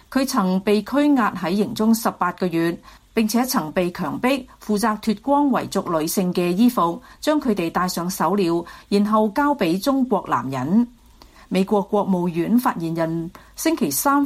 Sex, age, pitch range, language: female, 40-59, 185-260 Hz, Chinese